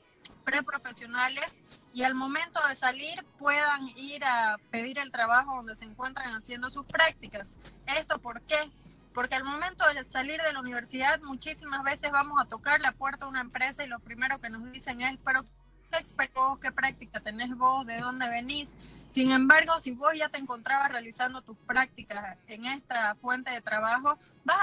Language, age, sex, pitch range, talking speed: Spanish, 20-39, female, 240-285 Hz, 175 wpm